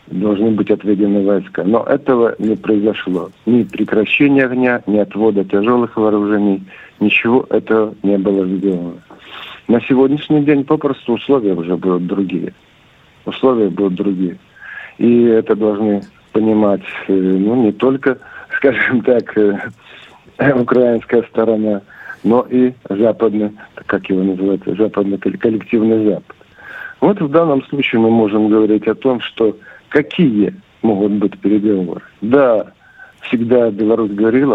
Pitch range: 100-120 Hz